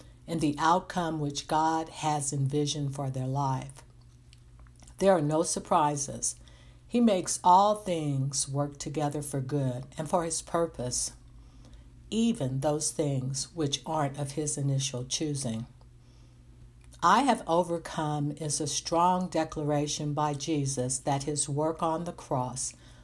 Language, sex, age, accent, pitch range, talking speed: English, female, 60-79, American, 130-160 Hz, 130 wpm